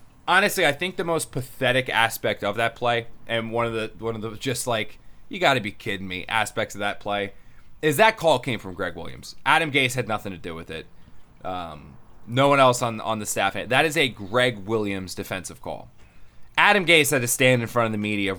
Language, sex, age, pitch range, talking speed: English, male, 20-39, 105-140 Hz, 230 wpm